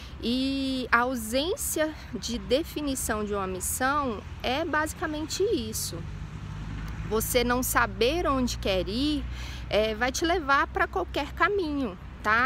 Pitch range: 245-310 Hz